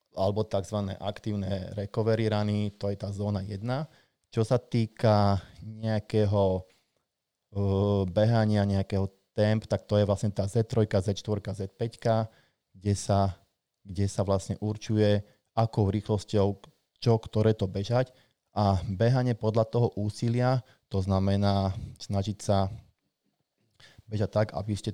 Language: Slovak